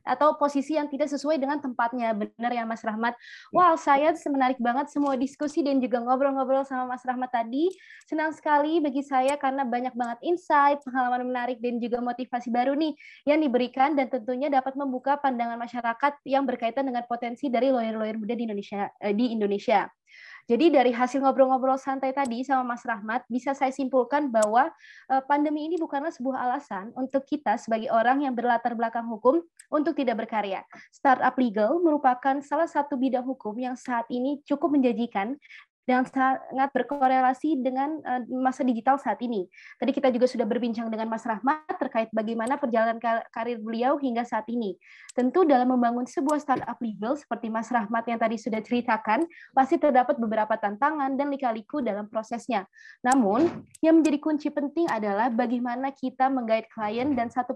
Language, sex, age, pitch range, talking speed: English, female, 20-39, 235-280 Hz, 165 wpm